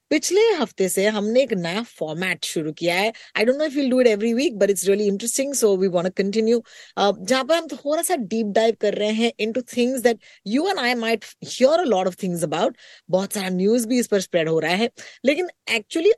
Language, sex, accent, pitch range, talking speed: Hindi, female, native, 185-265 Hz, 45 wpm